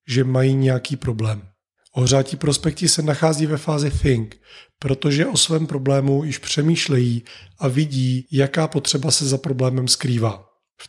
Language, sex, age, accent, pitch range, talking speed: Czech, male, 30-49, native, 125-150 Hz, 145 wpm